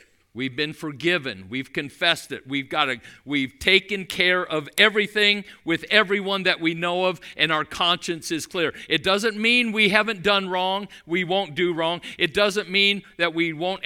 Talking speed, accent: 180 wpm, American